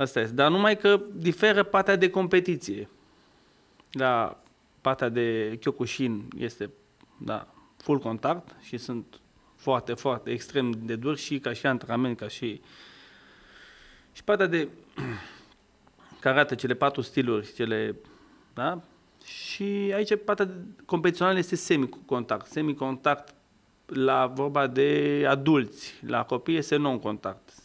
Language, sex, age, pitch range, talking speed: Romanian, male, 30-49, 125-155 Hz, 120 wpm